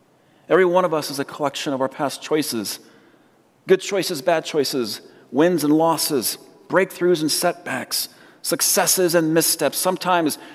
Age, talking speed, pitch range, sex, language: 40-59, 140 wpm, 120-145 Hz, male, English